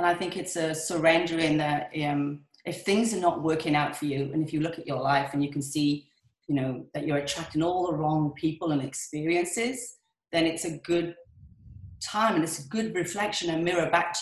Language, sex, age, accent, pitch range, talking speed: English, female, 30-49, British, 145-175 Hz, 225 wpm